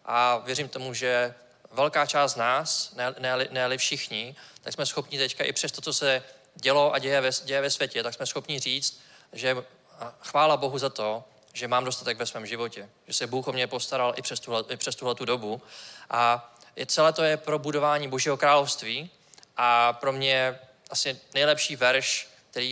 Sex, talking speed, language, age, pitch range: male, 200 wpm, Czech, 20-39, 120-145 Hz